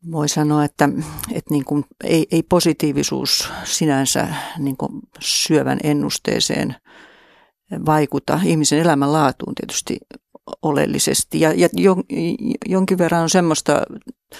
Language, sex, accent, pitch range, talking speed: Finnish, female, native, 150-175 Hz, 105 wpm